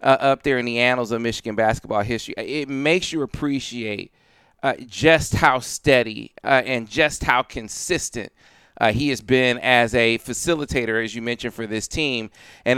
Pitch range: 120-155 Hz